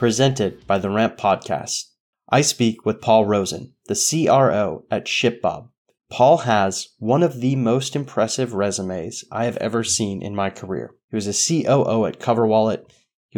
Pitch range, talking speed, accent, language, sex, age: 105-130 Hz, 160 wpm, American, English, male, 30-49